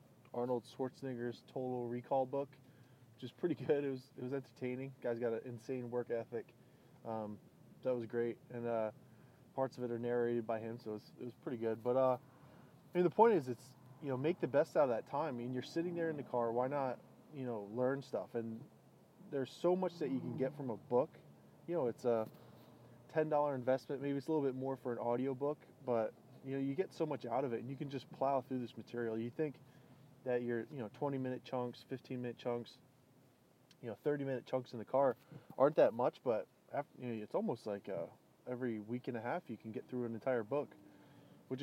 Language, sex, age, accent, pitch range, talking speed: English, male, 20-39, American, 120-135 Hz, 230 wpm